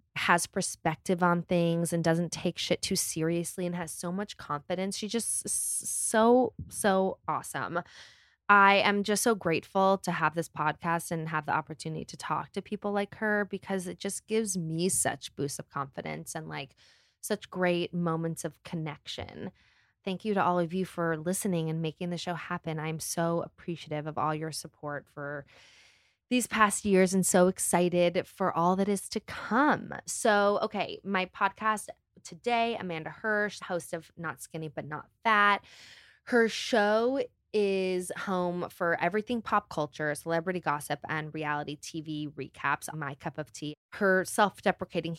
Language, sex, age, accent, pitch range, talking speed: English, female, 20-39, American, 155-195 Hz, 165 wpm